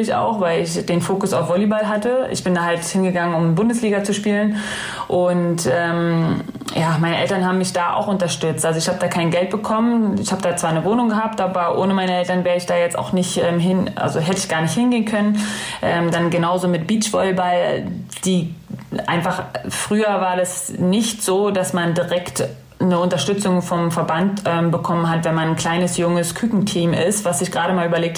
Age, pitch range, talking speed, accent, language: 20-39, 170-195 Hz, 200 wpm, German, German